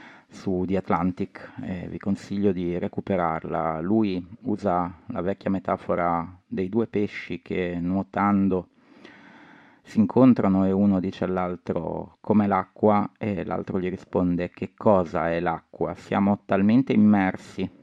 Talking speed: 125 wpm